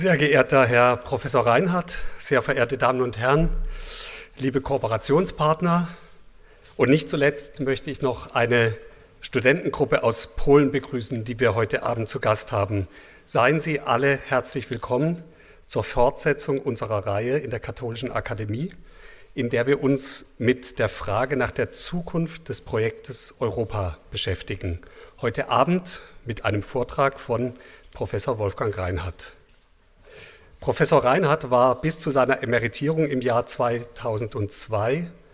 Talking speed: 130 wpm